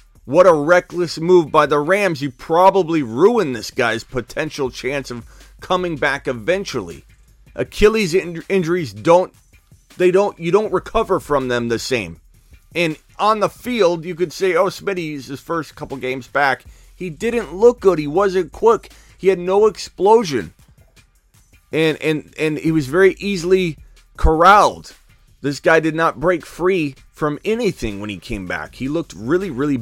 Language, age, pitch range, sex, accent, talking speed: English, 30-49, 145-190 Hz, male, American, 155 wpm